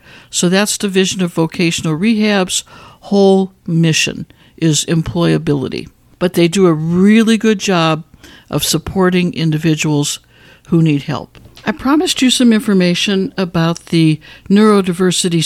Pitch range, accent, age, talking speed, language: 170-225 Hz, American, 60-79, 125 wpm, English